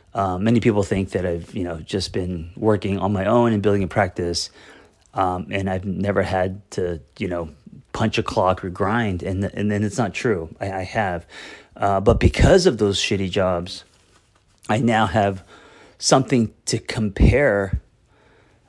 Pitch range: 95-115 Hz